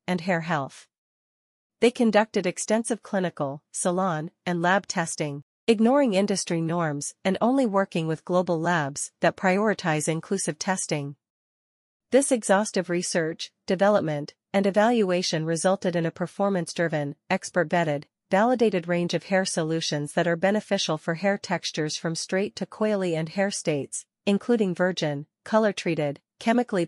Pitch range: 165-200 Hz